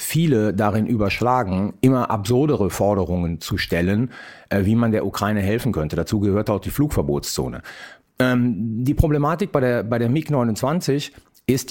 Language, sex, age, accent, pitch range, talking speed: German, male, 40-59, German, 100-130 Hz, 145 wpm